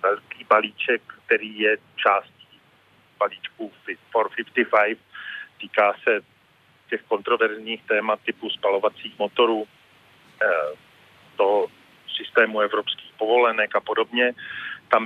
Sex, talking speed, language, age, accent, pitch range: male, 85 wpm, Czech, 40-59, native, 110-125 Hz